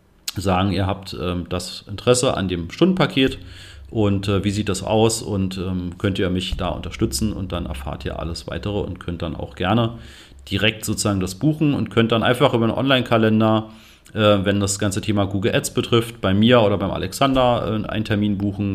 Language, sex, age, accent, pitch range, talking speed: German, male, 40-59, German, 95-115 Hz, 190 wpm